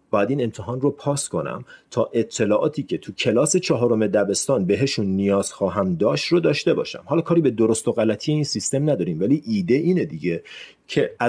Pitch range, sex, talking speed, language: 95-140 Hz, male, 180 wpm, Persian